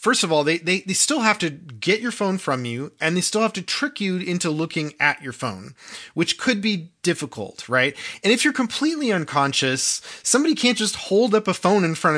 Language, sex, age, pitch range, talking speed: English, male, 30-49, 140-200 Hz, 220 wpm